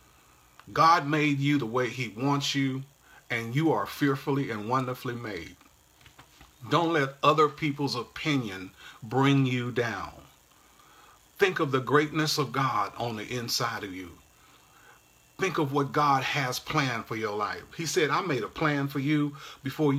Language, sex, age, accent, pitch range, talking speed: English, male, 40-59, American, 110-150 Hz, 155 wpm